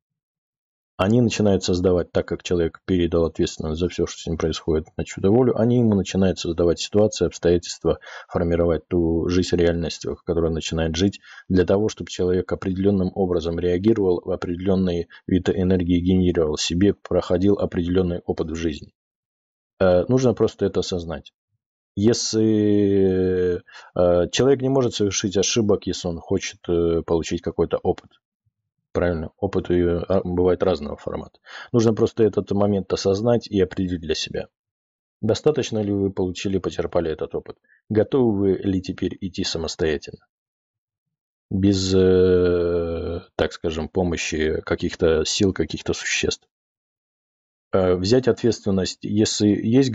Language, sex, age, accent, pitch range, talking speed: Russian, male, 20-39, native, 85-105 Hz, 125 wpm